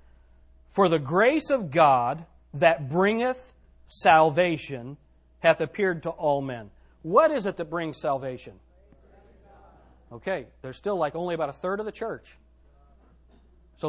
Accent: American